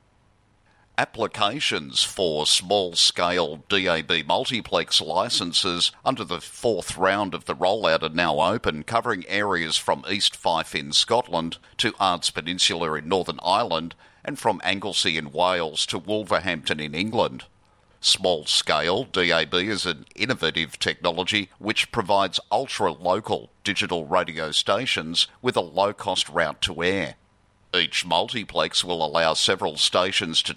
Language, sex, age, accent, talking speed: English, male, 50-69, Australian, 125 wpm